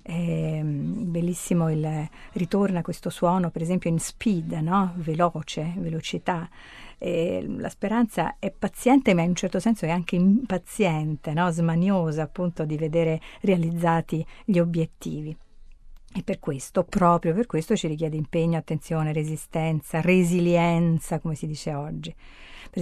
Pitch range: 160-190 Hz